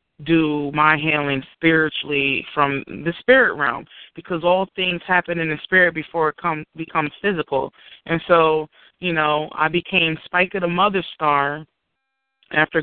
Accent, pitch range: American, 150-165 Hz